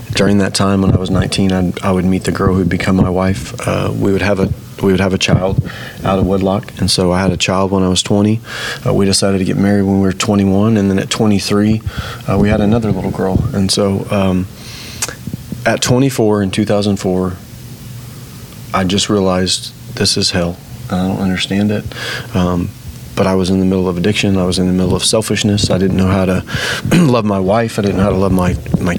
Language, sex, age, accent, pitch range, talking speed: English, male, 30-49, American, 95-115 Hz, 225 wpm